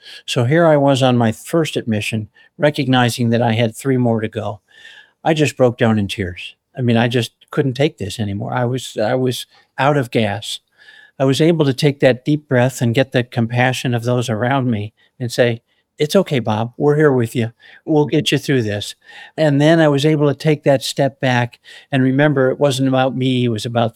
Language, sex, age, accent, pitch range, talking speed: English, male, 60-79, American, 115-140 Hz, 215 wpm